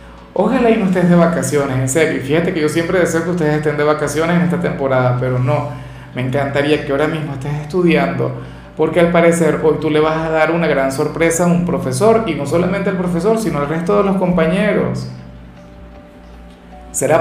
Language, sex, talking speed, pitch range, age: Spanish, male, 200 wpm, 130-175 Hz, 40-59